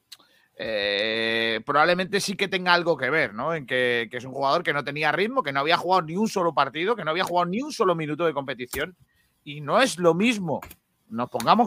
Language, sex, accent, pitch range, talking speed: Spanish, male, Spanish, 135-185 Hz, 225 wpm